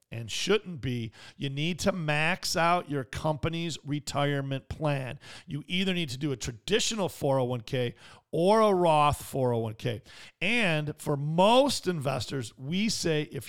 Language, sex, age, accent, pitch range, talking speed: English, male, 40-59, American, 130-165 Hz, 140 wpm